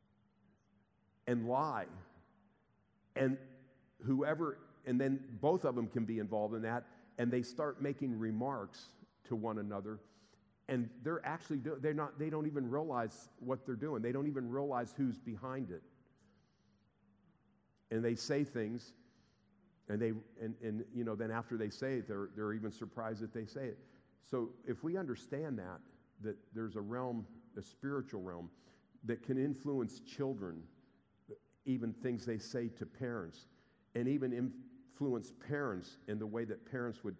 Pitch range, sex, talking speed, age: 105-130 Hz, male, 155 wpm, 50-69